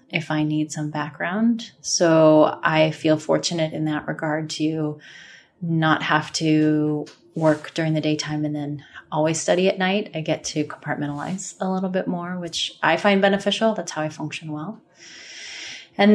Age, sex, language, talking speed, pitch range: 20-39, female, English, 165 wpm, 155-180 Hz